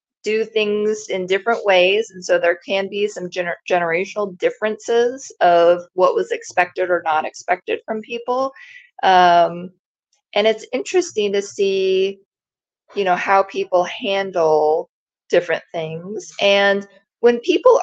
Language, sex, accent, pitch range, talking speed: English, female, American, 180-240 Hz, 130 wpm